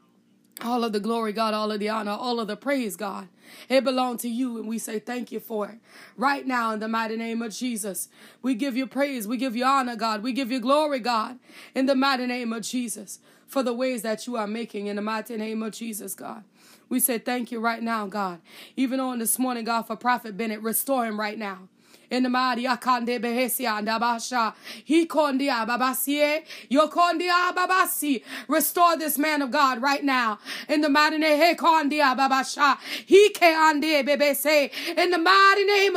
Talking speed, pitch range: 195 wpm, 235-335 Hz